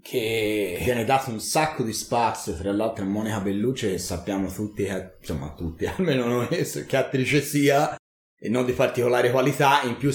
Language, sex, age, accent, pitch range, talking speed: Italian, male, 30-49, native, 110-140 Hz, 170 wpm